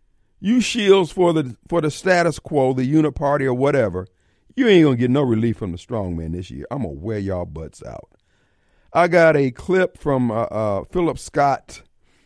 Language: Japanese